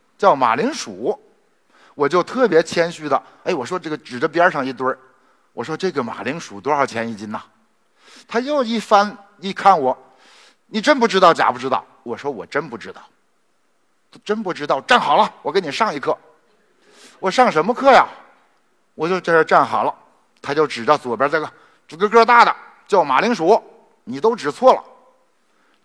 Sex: male